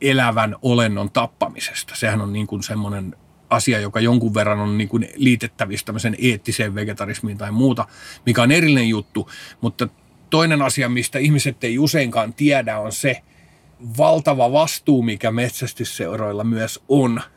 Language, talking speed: Finnish, 130 wpm